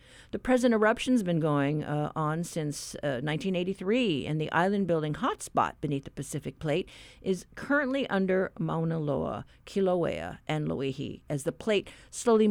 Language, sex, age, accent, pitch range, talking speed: English, female, 50-69, American, 150-200 Hz, 155 wpm